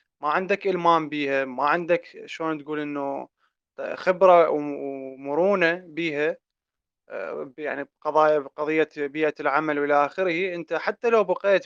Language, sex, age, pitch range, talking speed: Arabic, male, 20-39, 145-180 Hz, 120 wpm